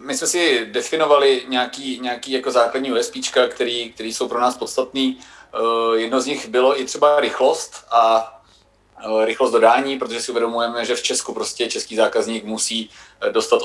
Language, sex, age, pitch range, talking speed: Czech, male, 30-49, 110-130 Hz, 155 wpm